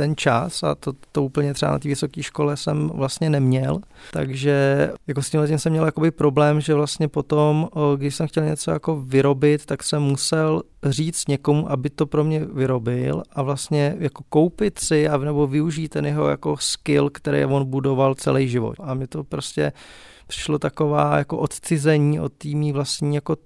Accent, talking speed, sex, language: native, 180 wpm, male, Czech